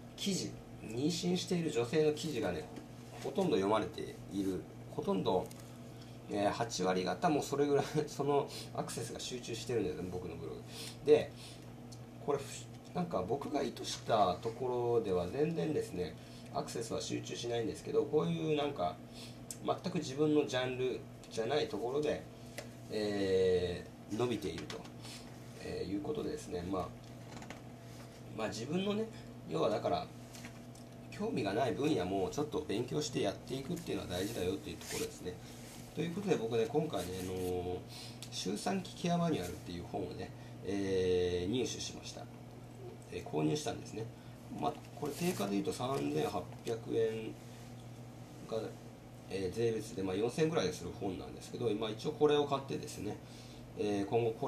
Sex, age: male, 30-49